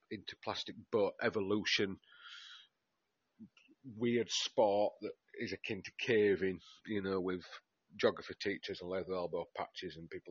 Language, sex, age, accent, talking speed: English, male, 40-59, British, 130 wpm